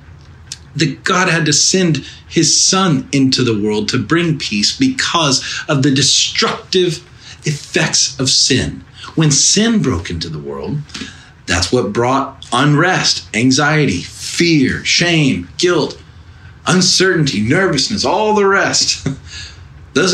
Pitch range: 125-170 Hz